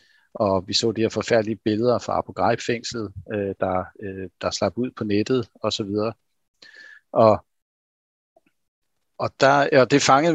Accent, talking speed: native, 145 wpm